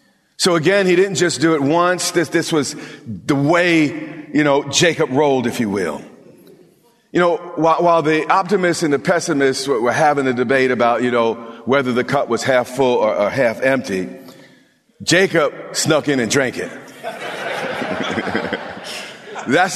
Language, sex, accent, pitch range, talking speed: English, male, American, 135-180 Hz, 165 wpm